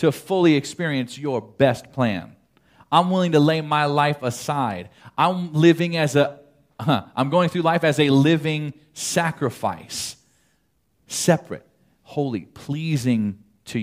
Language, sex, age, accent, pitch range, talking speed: English, male, 40-59, American, 120-160 Hz, 130 wpm